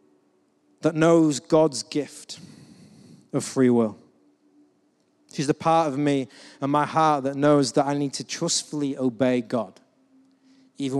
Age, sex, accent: 40-59, male, British